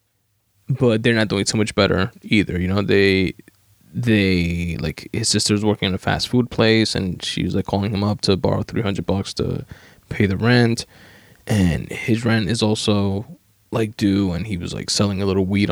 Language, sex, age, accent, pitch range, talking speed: English, male, 20-39, American, 100-115 Hz, 190 wpm